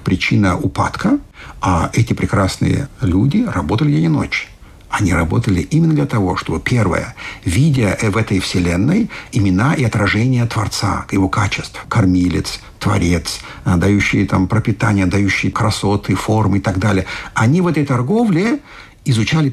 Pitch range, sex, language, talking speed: 100-145 Hz, male, Russian, 130 wpm